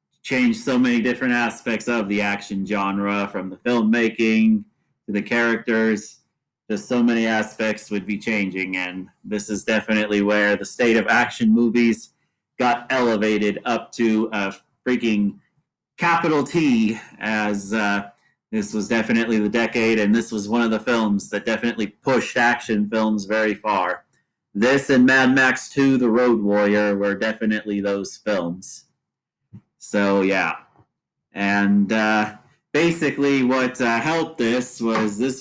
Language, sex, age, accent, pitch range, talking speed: English, male, 30-49, American, 105-125 Hz, 140 wpm